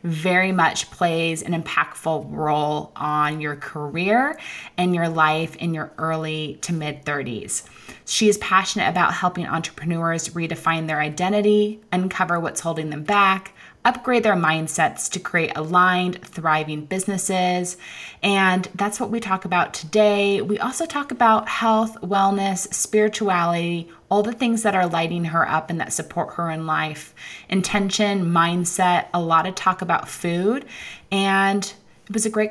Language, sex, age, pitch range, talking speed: English, female, 20-39, 165-200 Hz, 150 wpm